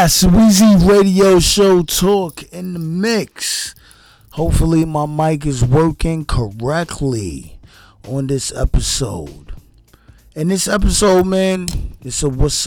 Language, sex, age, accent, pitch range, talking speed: English, male, 20-39, American, 125-155 Hz, 115 wpm